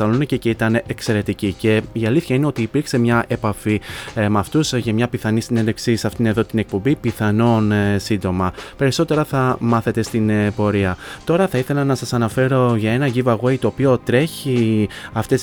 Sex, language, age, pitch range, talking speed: male, Greek, 20-39, 110-130 Hz, 165 wpm